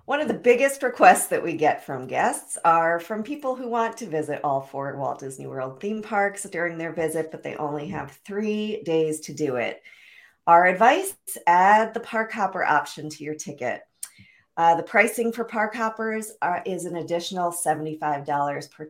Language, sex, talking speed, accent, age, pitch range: English, female, 180 wpm, American, 40-59, 145-205 Hz